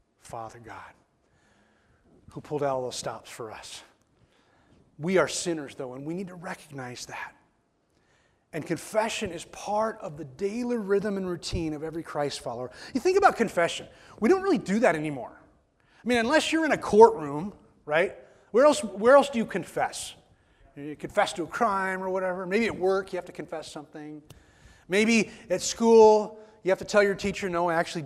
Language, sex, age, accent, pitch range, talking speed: English, male, 30-49, American, 150-215 Hz, 180 wpm